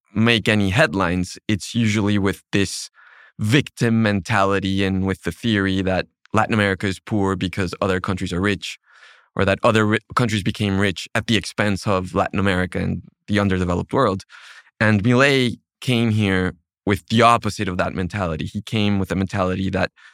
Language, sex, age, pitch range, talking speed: English, male, 20-39, 95-115 Hz, 165 wpm